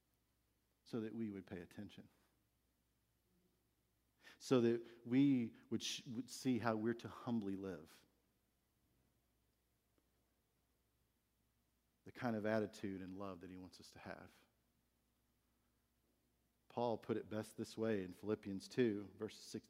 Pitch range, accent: 95-130 Hz, American